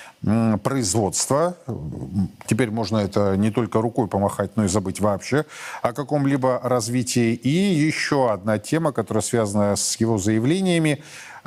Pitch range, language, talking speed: 105-135 Hz, Russian, 125 wpm